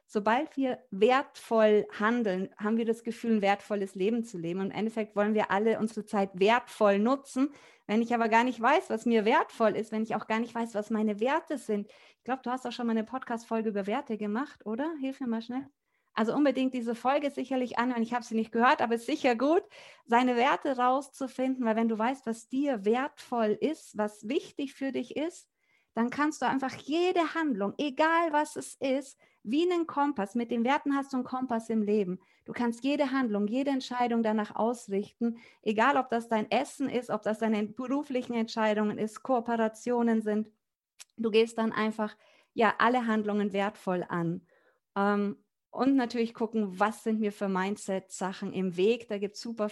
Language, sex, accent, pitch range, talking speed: German, female, German, 210-255 Hz, 190 wpm